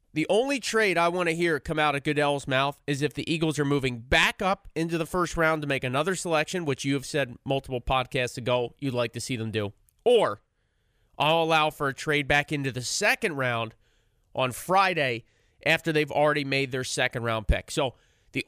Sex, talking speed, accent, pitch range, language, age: male, 210 wpm, American, 125-160 Hz, English, 30-49